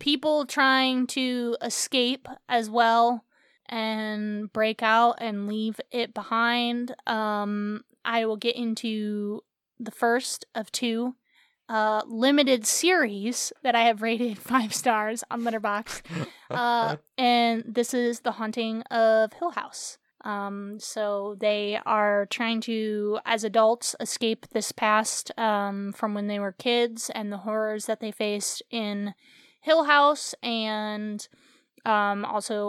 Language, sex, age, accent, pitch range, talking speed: English, female, 20-39, American, 215-245 Hz, 130 wpm